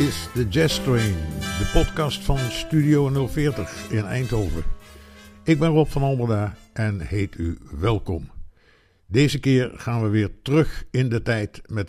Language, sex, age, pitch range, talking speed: Dutch, male, 60-79, 95-130 Hz, 155 wpm